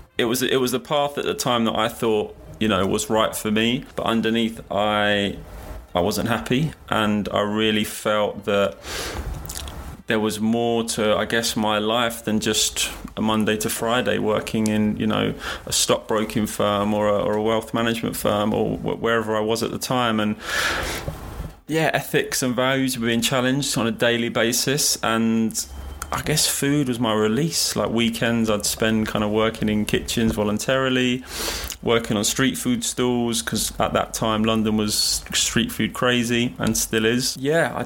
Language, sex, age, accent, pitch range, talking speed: English, male, 30-49, British, 105-120 Hz, 180 wpm